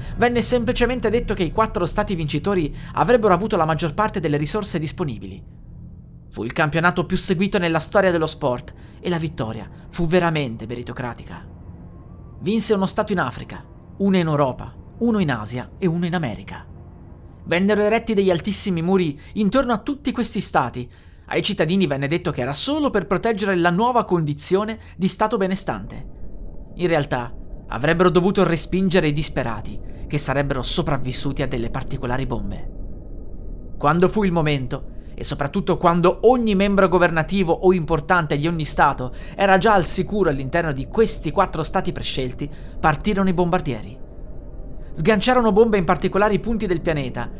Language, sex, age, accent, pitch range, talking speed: Italian, male, 30-49, native, 130-195 Hz, 150 wpm